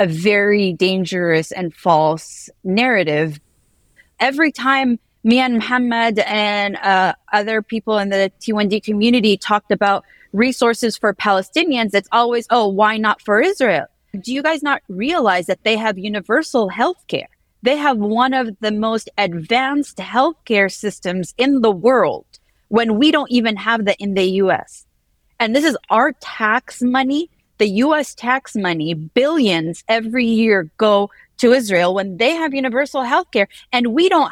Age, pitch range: 30-49, 205-255 Hz